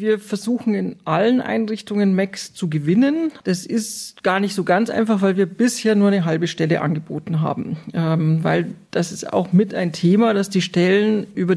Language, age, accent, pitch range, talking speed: German, 40-59, German, 170-200 Hz, 185 wpm